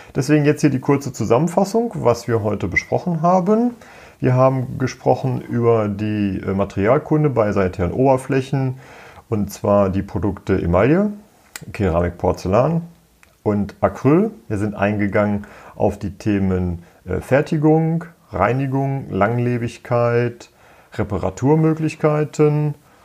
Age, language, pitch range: 40-59, German, 100-145 Hz